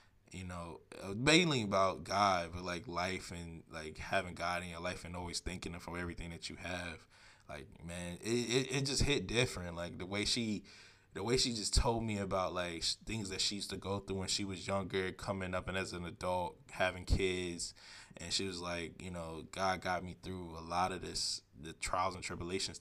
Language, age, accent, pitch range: English, 20-39, American, 90-110 Hz